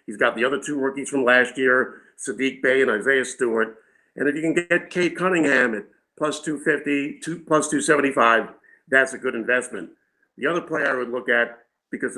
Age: 50-69